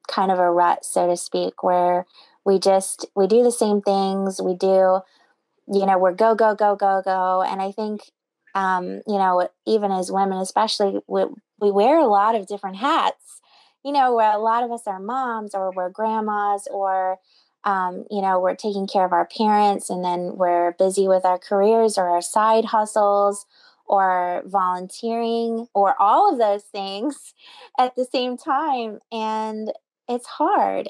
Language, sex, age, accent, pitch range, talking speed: English, female, 20-39, American, 185-225 Hz, 175 wpm